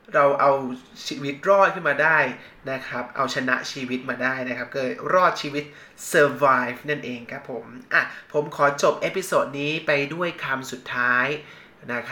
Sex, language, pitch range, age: male, Thai, 130-155 Hz, 20-39